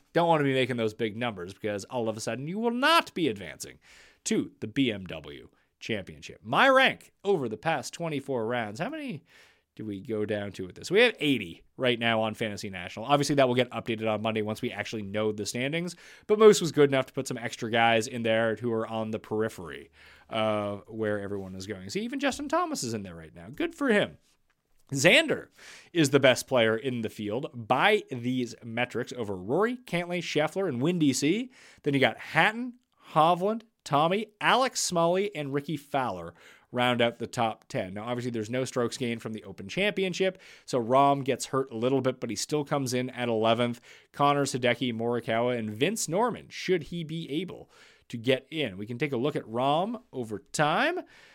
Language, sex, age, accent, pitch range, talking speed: English, male, 30-49, American, 110-165 Hz, 200 wpm